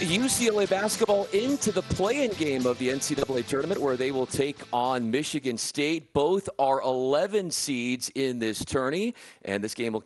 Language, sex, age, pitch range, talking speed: English, male, 40-59, 125-165 Hz, 165 wpm